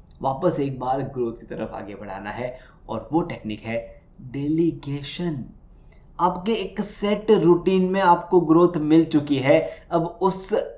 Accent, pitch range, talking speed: native, 120-170 Hz, 145 wpm